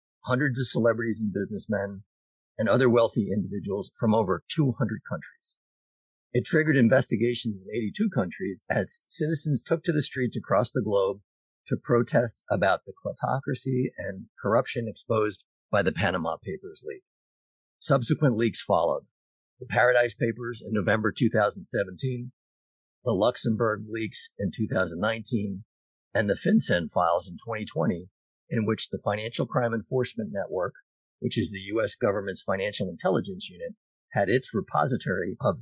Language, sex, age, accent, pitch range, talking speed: English, male, 50-69, American, 100-130 Hz, 135 wpm